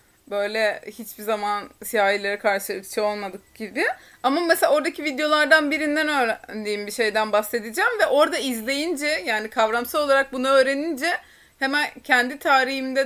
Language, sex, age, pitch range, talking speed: Turkish, female, 30-49, 205-260 Hz, 135 wpm